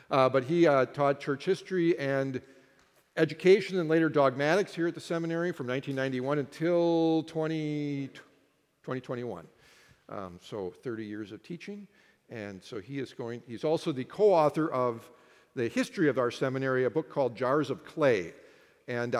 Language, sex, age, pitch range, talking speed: English, male, 50-69, 120-160 Hz, 155 wpm